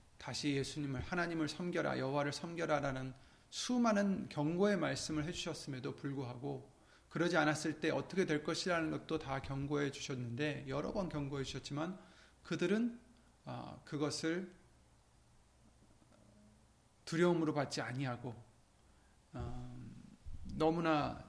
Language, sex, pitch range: Korean, male, 130-175 Hz